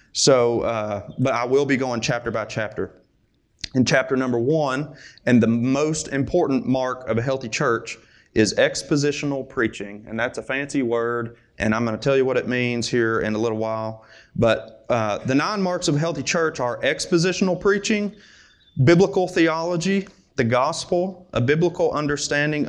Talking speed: 170 wpm